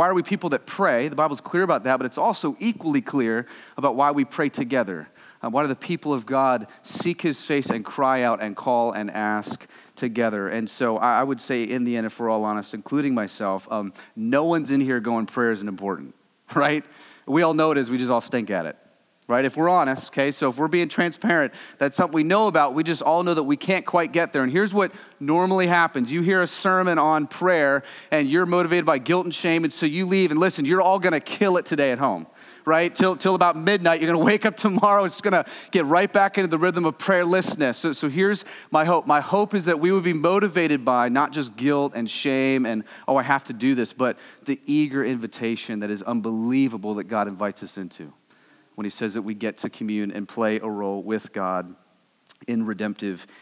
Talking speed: 235 wpm